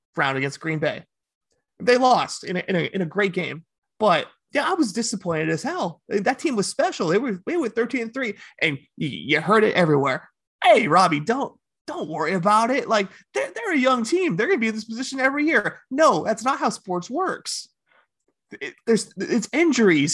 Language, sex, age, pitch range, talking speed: English, male, 30-49, 170-235 Hz, 195 wpm